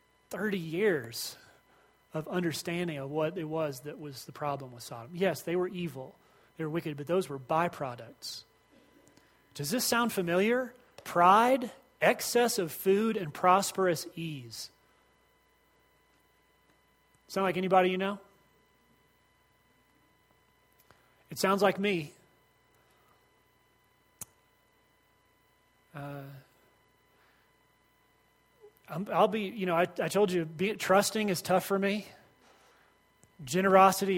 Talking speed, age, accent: 105 wpm, 30-49, American